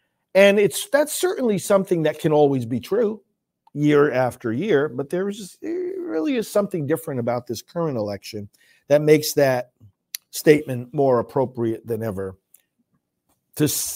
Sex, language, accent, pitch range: male, English, American, 115-155 Hz